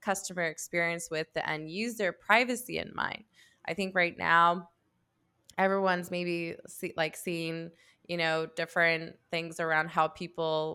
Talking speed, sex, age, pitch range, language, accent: 135 wpm, female, 20-39, 165-195 Hz, English, American